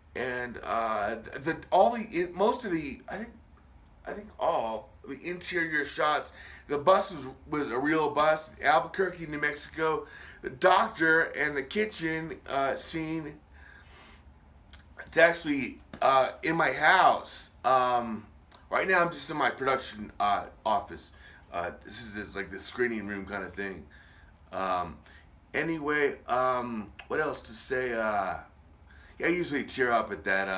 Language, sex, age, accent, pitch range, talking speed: English, male, 30-49, American, 95-150 Hz, 145 wpm